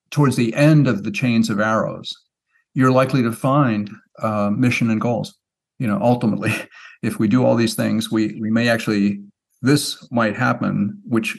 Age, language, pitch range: 50-69, English, 110-130 Hz